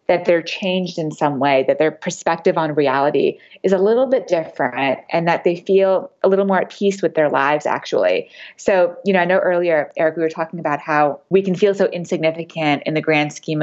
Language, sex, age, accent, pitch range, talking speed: English, female, 20-39, American, 155-185 Hz, 220 wpm